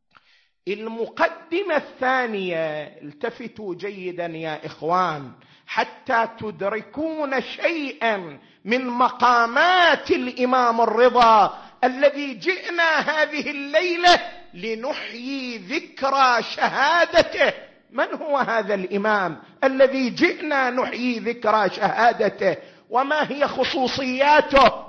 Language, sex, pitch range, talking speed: Arabic, male, 210-285 Hz, 75 wpm